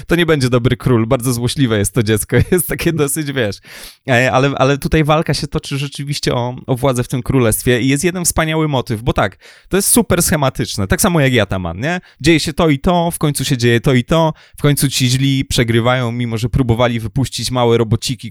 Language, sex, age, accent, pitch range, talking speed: Polish, male, 20-39, native, 120-150 Hz, 220 wpm